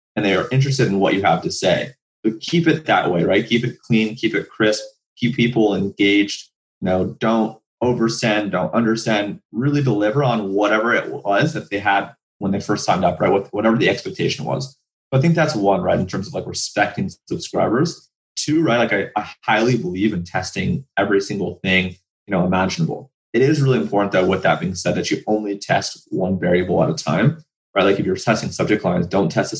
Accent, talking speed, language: American, 215 wpm, English